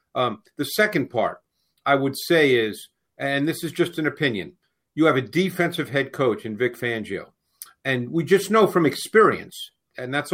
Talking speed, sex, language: 180 wpm, male, English